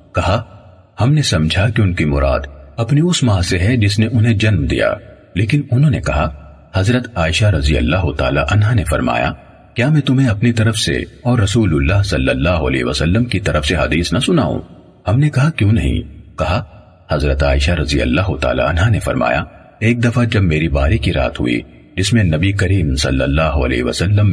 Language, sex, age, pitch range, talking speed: Urdu, male, 40-59, 75-115 Hz, 195 wpm